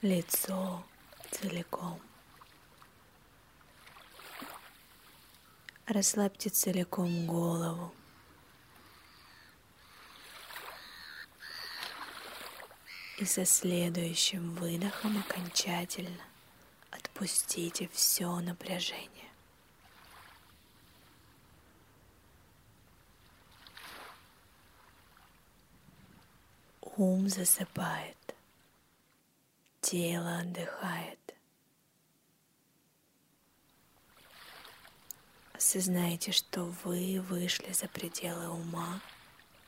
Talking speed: 35 wpm